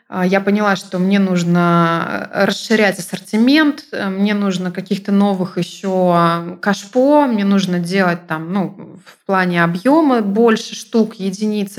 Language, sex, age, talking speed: Russian, female, 20-39, 120 wpm